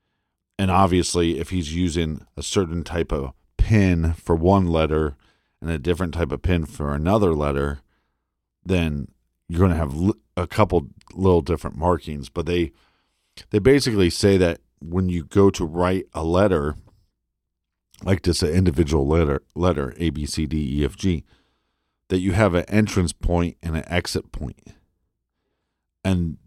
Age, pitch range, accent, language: 50-69, 80-95 Hz, American, English